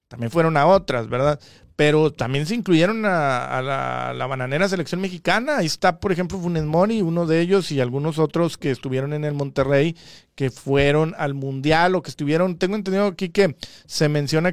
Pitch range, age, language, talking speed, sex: 145-195 Hz, 40-59, Spanish, 190 wpm, male